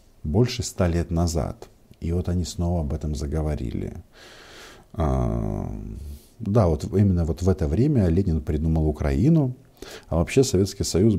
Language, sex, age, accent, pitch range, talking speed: Russian, male, 50-69, native, 80-115 Hz, 135 wpm